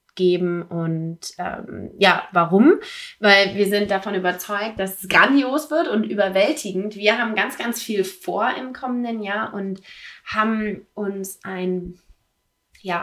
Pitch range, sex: 175-225 Hz, female